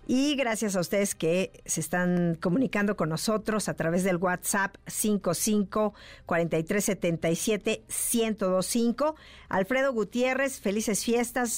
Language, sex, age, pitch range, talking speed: Spanish, female, 50-69, 175-220 Hz, 100 wpm